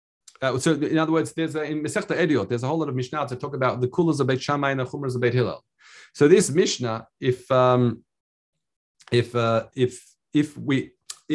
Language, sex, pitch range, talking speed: English, male, 125-160 Hz, 200 wpm